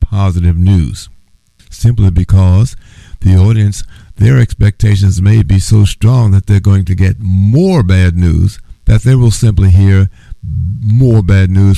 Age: 60-79